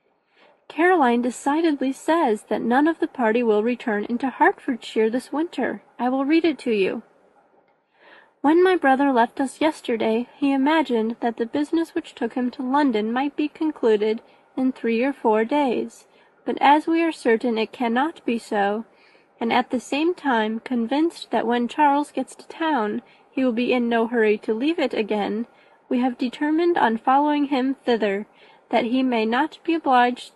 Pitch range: 230-290 Hz